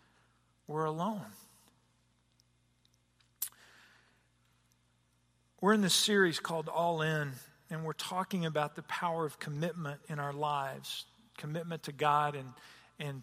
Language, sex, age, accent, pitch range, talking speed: English, male, 50-69, American, 145-185 Hz, 115 wpm